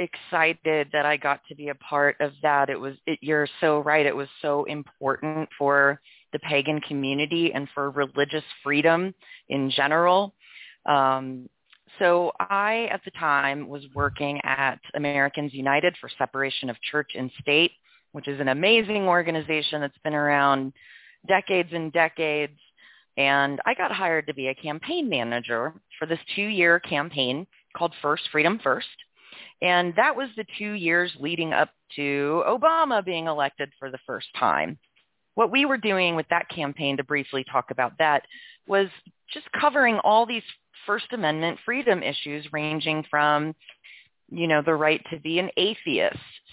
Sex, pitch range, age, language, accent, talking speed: female, 140-175 Hz, 30-49, English, American, 155 wpm